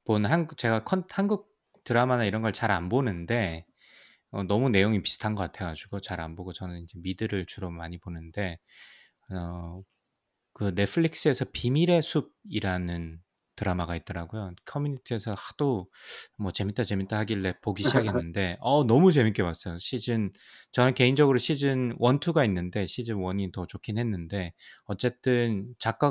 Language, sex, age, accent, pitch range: Korean, male, 20-39, native, 90-120 Hz